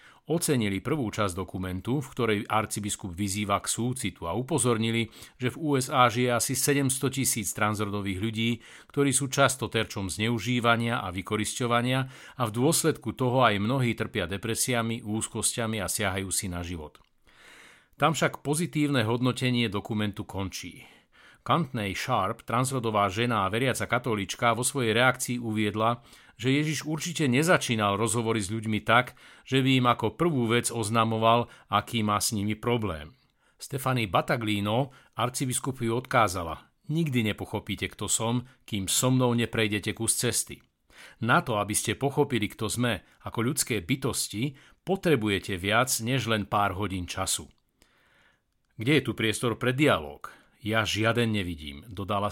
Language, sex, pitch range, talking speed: Slovak, male, 105-130 Hz, 140 wpm